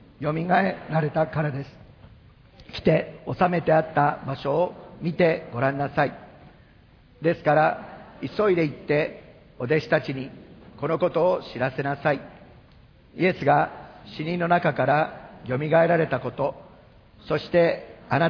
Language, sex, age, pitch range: Japanese, male, 50-69, 140-170 Hz